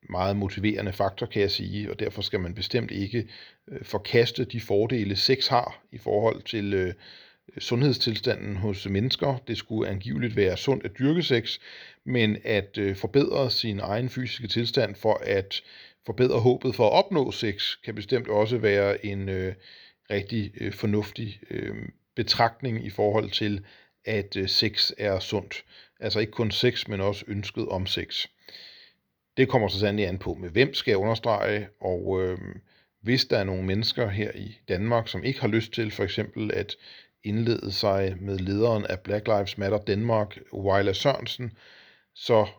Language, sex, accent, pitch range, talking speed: Danish, male, native, 100-115 Hz, 155 wpm